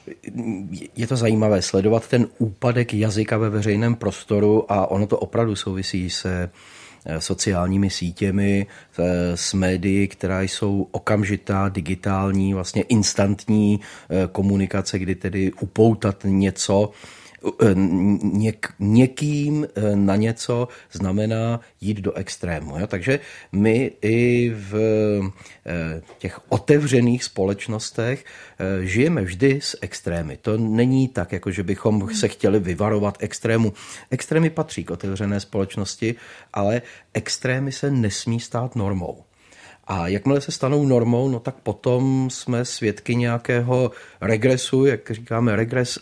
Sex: male